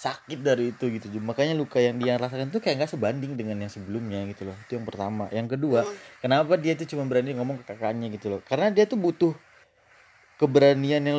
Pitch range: 95-130 Hz